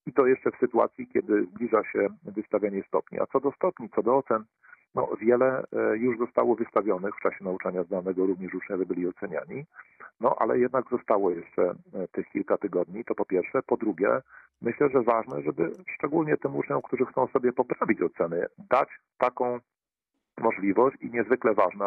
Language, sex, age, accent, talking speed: Polish, male, 50-69, native, 165 wpm